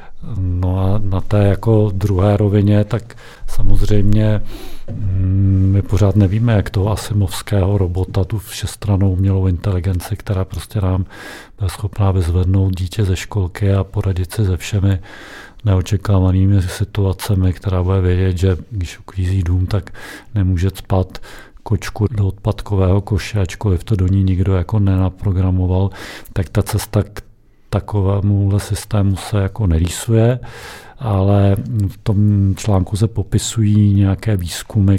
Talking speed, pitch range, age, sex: 125 wpm, 95-105 Hz, 40-59, male